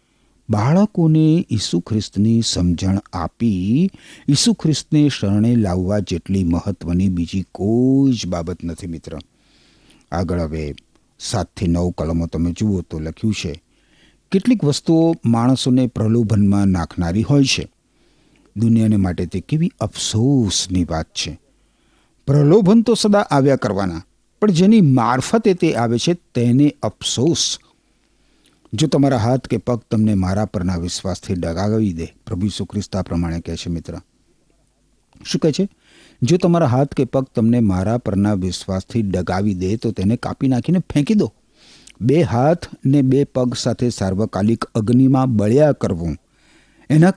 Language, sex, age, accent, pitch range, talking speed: Gujarati, male, 60-79, native, 95-140 Hz, 120 wpm